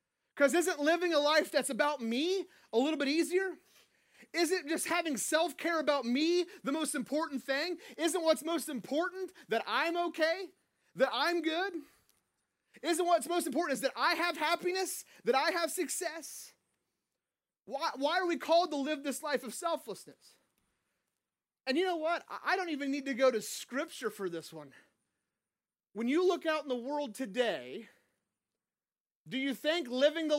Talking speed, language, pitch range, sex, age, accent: 165 wpm, English, 265-330 Hz, male, 30-49, American